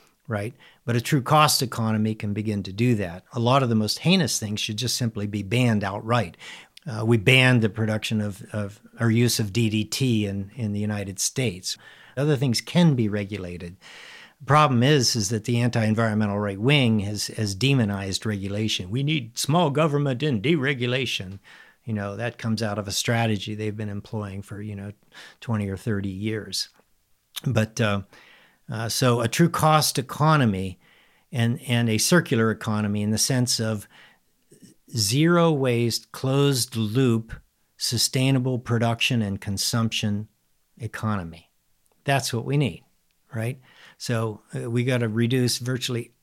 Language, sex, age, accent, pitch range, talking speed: English, male, 50-69, American, 105-125 Hz, 155 wpm